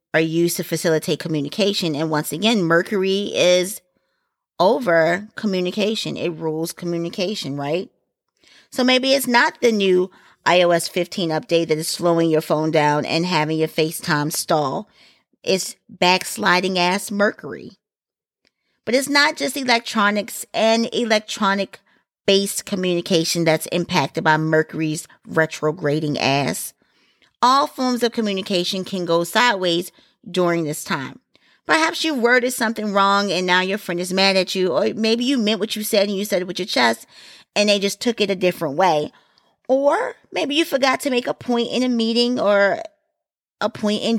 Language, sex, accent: English, female, American